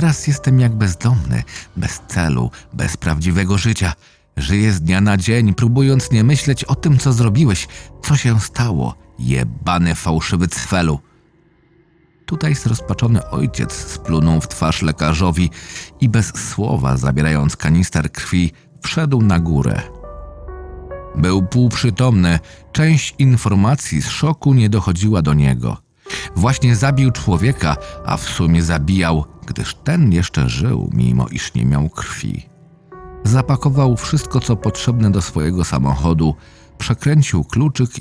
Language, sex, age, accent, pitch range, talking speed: Polish, male, 40-59, native, 80-130 Hz, 125 wpm